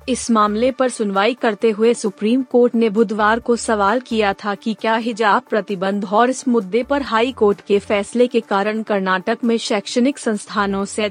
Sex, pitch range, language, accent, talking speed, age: female, 210-245 Hz, Hindi, native, 180 wpm, 30-49